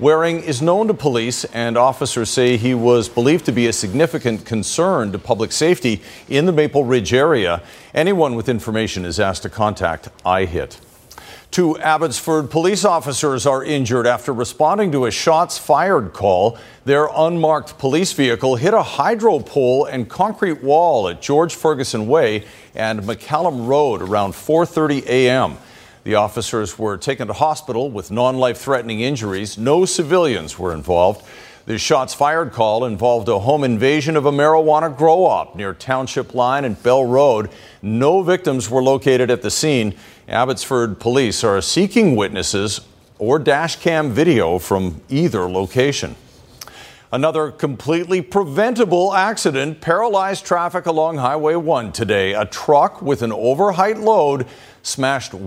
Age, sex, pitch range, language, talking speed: 50-69, male, 115-155 Hz, English, 145 wpm